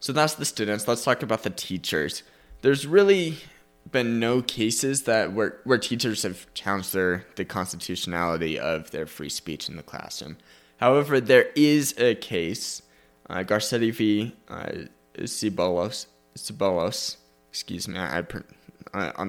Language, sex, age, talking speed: English, male, 20-39, 140 wpm